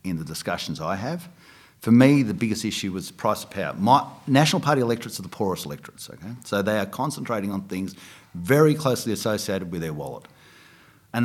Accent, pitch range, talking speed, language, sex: Australian, 95-130 Hz, 200 wpm, English, male